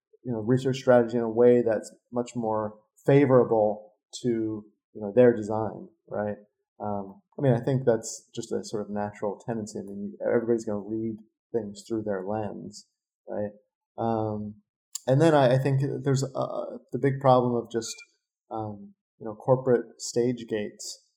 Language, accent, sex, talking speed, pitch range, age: English, American, male, 170 wpm, 110-130 Hz, 30-49